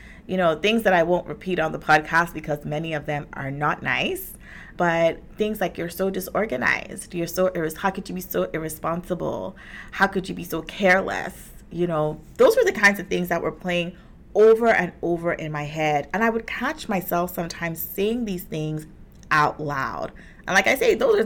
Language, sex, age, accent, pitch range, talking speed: English, female, 30-49, American, 155-195 Hz, 200 wpm